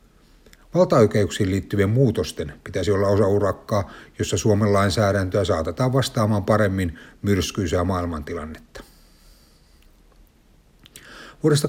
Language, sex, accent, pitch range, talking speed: Finnish, male, native, 90-115 Hz, 80 wpm